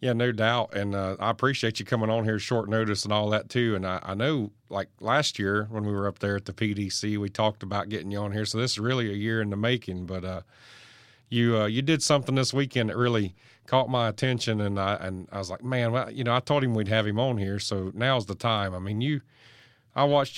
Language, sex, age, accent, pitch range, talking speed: English, male, 40-59, American, 100-120 Hz, 260 wpm